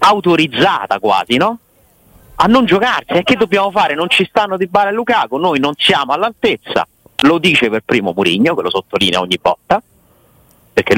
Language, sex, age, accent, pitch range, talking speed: Italian, male, 30-49, native, 130-205 Hz, 175 wpm